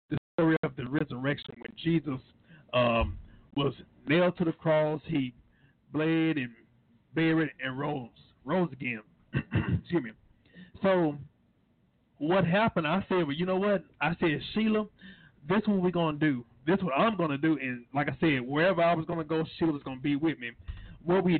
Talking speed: 170 wpm